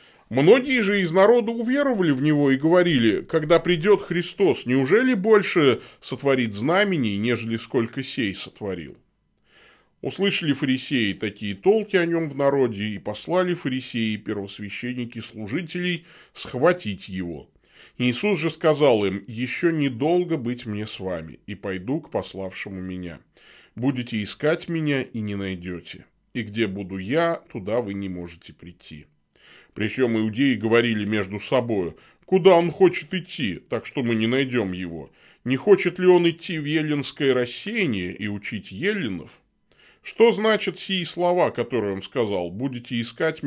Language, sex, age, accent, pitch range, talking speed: Russian, male, 20-39, native, 105-170 Hz, 140 wpm